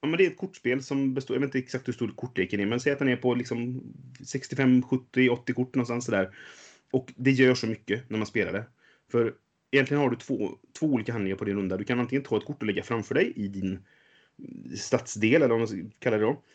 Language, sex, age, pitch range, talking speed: Swedish, male, 30-49, 100-125 Hz, 235 wpm